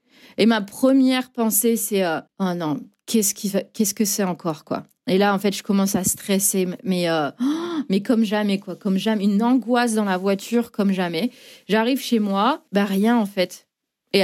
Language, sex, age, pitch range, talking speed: French, female, 20-39, 185-240 Hz, 175 wpm